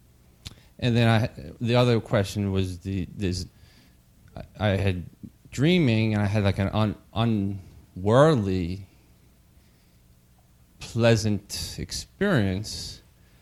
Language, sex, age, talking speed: English, male, 30-49, 100 wpm